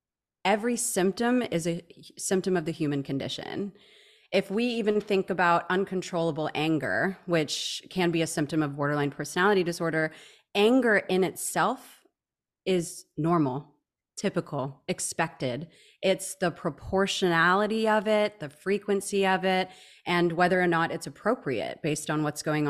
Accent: American